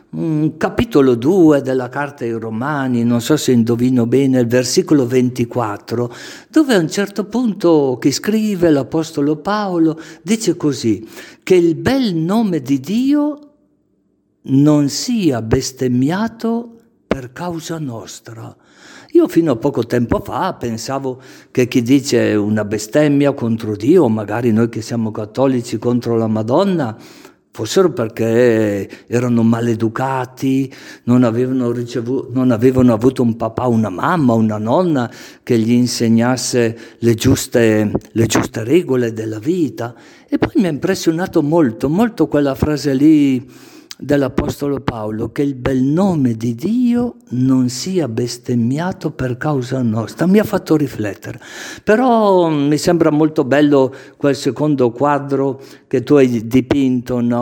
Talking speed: 130 wpm